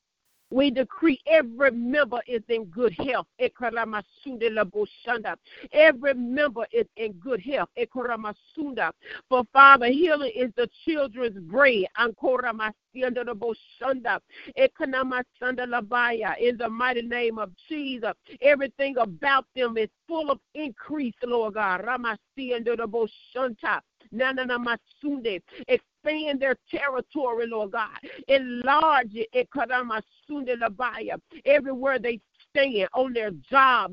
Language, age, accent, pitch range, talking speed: English, 50-69, American, 235-285 Hz, 100 wpm